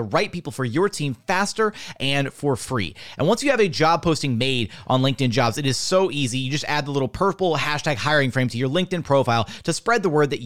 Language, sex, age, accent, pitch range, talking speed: English, male, 30-49, American, 120-165 Hz, 240 wpm